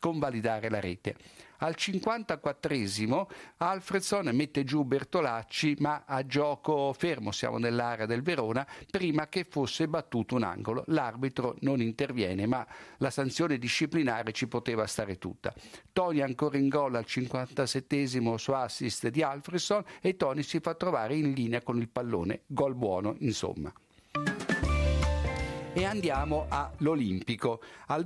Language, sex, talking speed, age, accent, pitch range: Italian, male, 130 wpm, 50-69, native, 115-155 Hz